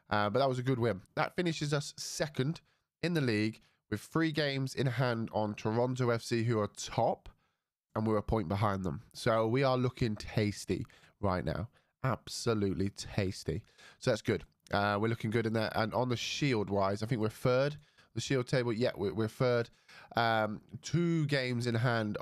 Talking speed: 190 wpm